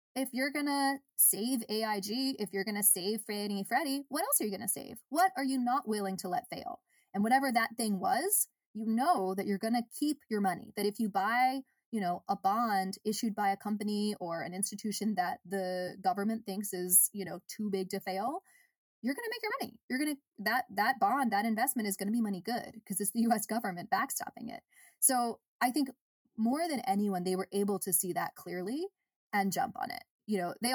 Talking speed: 220 wpm